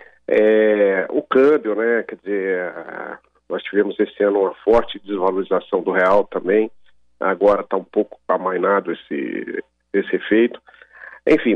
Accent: Brazilian